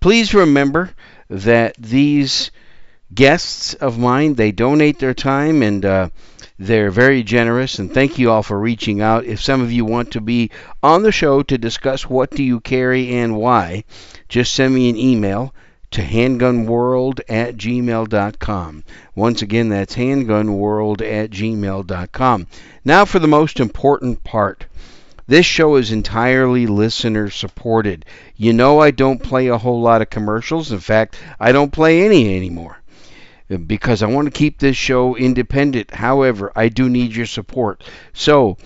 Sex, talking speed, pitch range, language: male, 155 wpm, 110-130 Hz, English